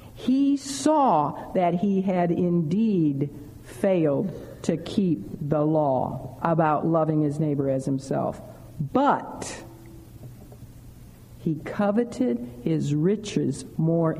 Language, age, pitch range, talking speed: English, 50-69, 140-195 Hz, 95 wpm